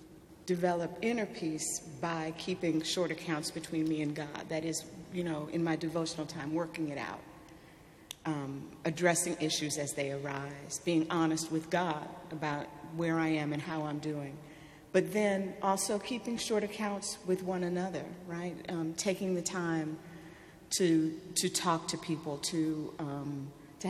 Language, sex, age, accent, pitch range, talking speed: English, female, 40-59, American, 160-185 Hz, 155 wpm